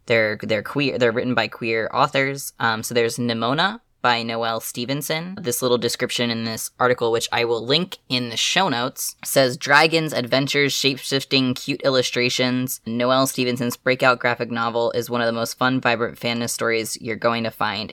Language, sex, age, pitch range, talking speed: English, female, 10-29, 115-130 Hz, 175 wpm